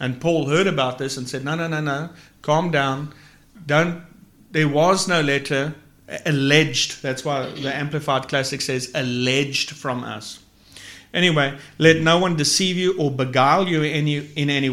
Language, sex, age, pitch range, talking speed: English, male, 50-69, 130-165 Hz, 160 wpm